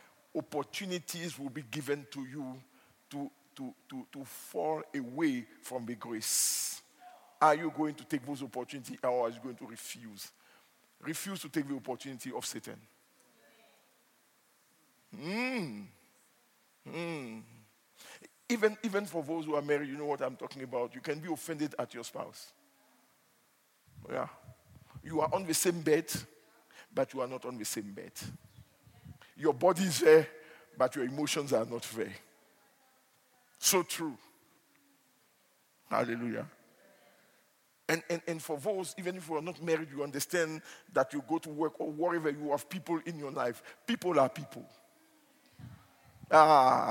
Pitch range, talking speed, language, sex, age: 135-185 Hz, 145 wpm, English, male, 50-69